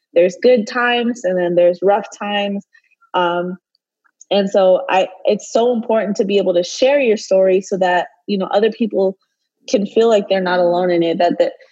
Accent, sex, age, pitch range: American, female, 20-39, 185-215 Hz